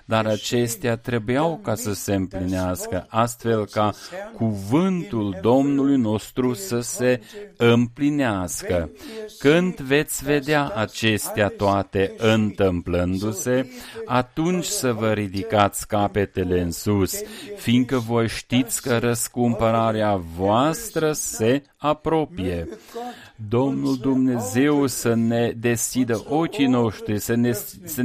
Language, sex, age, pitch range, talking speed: Romanian, male, 40-59, 105-130 Hz, 100 wpm